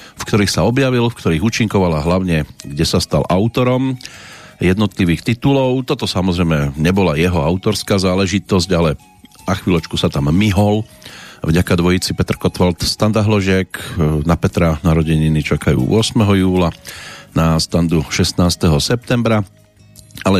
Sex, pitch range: male, 85-115 Hz